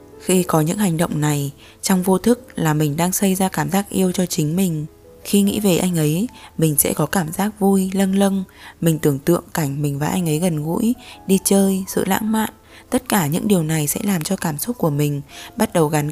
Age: 10-29